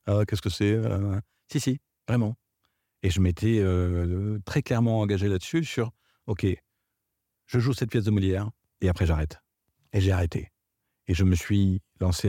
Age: 50-69